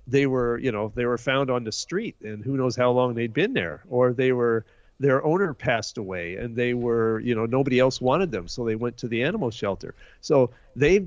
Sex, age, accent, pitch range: male, 50-69, American, 110-135 Hz